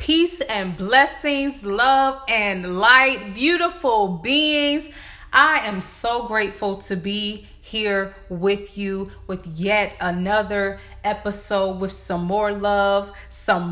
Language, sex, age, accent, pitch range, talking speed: English, female, 20-39, American, 205-310 Hz, 115 wpm